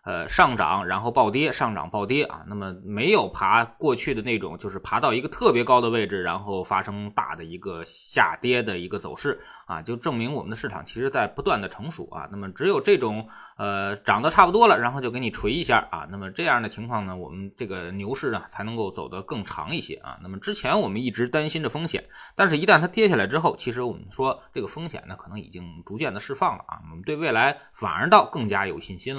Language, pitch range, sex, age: Chinese, 100-145 Hz, male, 20-39